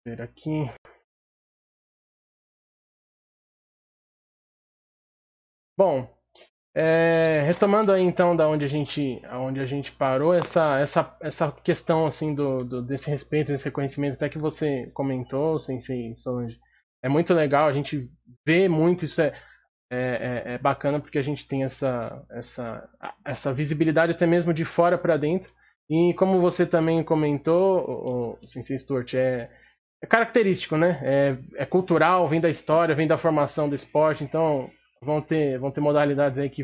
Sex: male